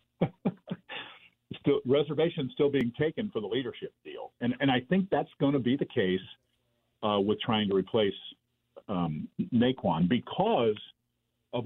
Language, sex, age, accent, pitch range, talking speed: English, male, 50-69, American, 110-145 Hz, 145 wpm